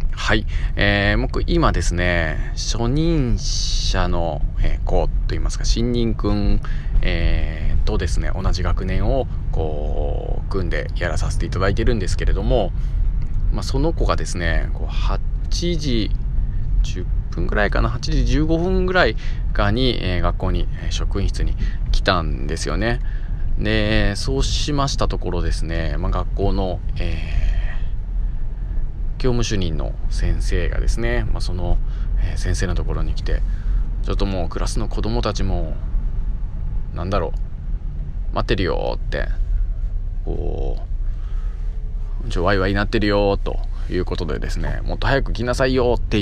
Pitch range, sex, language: 80-105 Hz, male, Japanese